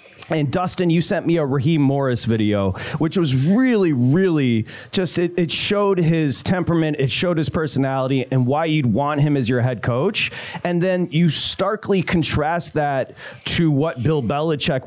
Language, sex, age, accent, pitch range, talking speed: English, male, 30-49, American, 135-185 Hz, 170 wpm